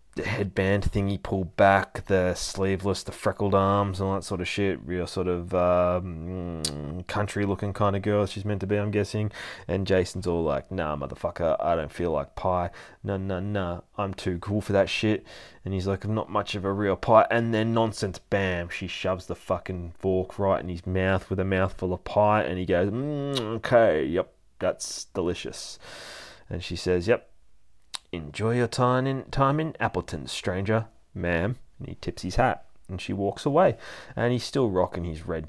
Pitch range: 90-115 Hz